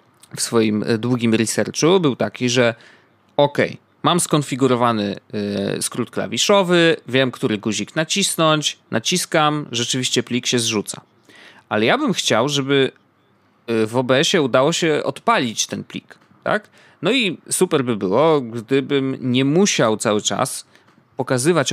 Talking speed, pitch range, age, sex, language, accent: 120 wpm, 115-145 Hz, 30-49, male, Polish, native